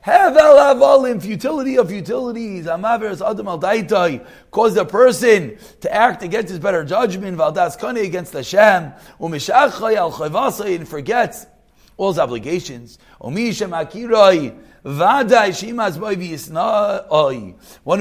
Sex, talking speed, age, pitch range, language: male, 105 wpm, 30-49, 160-220 Hz, English